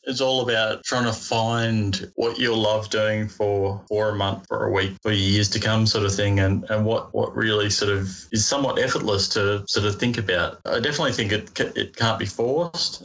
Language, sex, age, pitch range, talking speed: English, male, 20-39, 100-110 Hz, 215 wpm